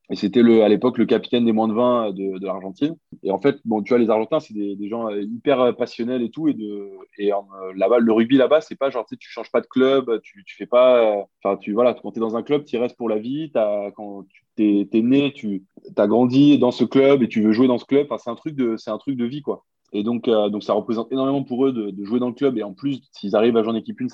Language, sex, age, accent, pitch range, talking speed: French, male, 20-39, French, 105-130 Hz, 295 wpm